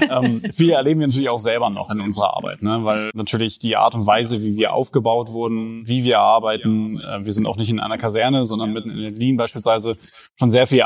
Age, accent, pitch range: 20-39, German, 110-125 Hz